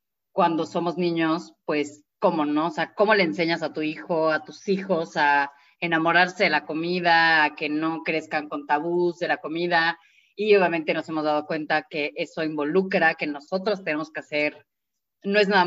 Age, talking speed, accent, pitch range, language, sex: 20-39, 185 wpm, Mexican, 150-175 Hz, Spanish, female